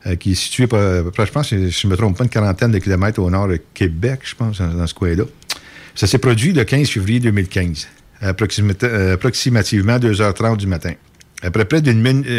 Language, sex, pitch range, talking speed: French, male, 90-115 Hz, 205 wpm